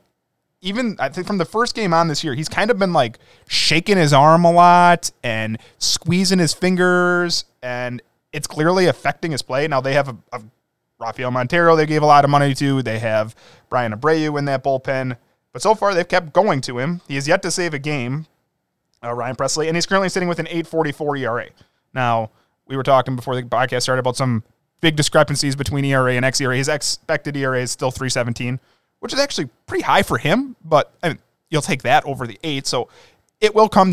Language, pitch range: English, 130-170 Hz